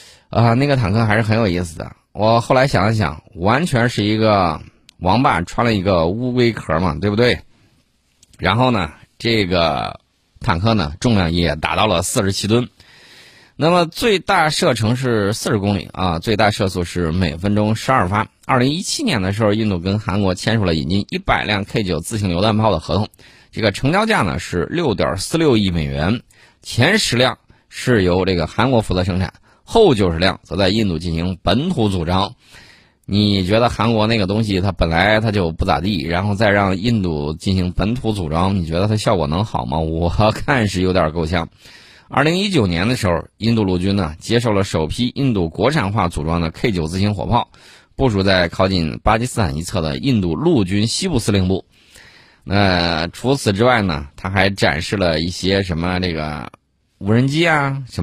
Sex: male